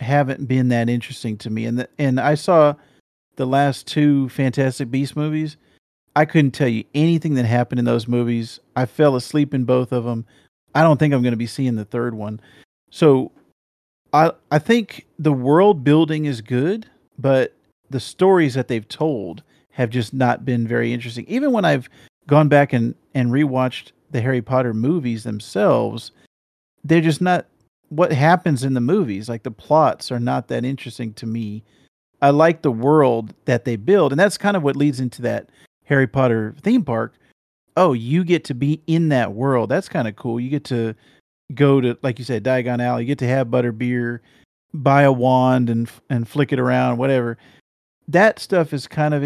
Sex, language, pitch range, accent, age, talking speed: male, English, 120-150 Hz, American, 40-59, 190 wpm